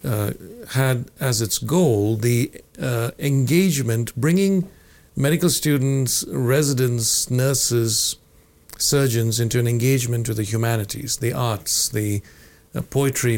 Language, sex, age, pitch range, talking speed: English, male, 60-79, 115-135 Hz, 110 wpm